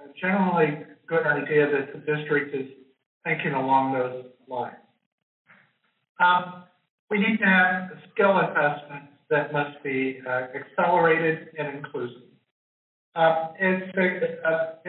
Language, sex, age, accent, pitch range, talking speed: English, male, 60-79, American, 145-170 Hz, 105 wpm